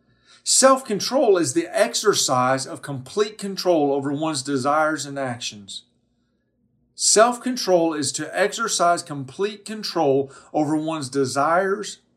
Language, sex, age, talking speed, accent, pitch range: English, male, 40-59, 105 wpm, American, 140-195 Hz